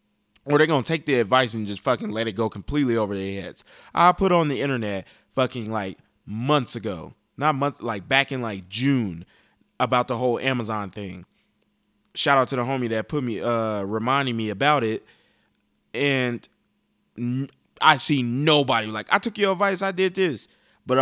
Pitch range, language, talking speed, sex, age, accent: 115-150 Hz, English, 185 wpm, male, 20-39, American